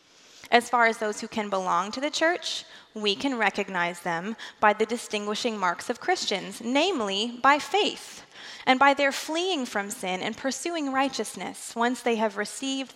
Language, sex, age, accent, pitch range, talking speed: English, female, 20-39, American, 205-265 Hz, 165 wpm